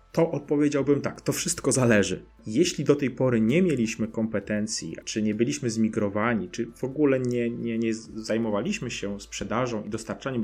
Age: 30-49